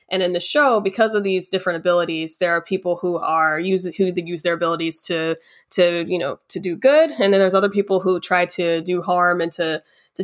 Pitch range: 175-195 Hz